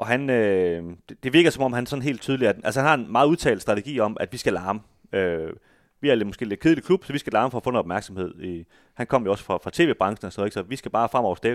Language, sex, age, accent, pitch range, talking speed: Danish, male, 30-49, native, 95-130 Hz, 295 wpm